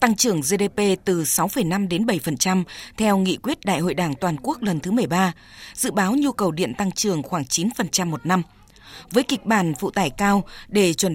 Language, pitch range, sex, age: Vietnamese, 175-215 Hz, female, 20-39